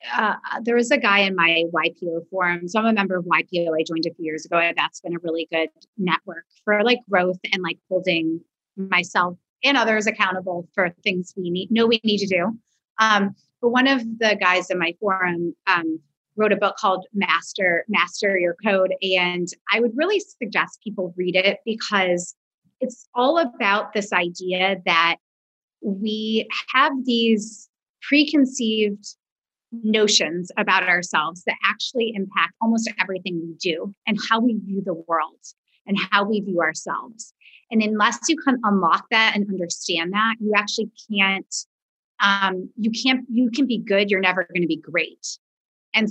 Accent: American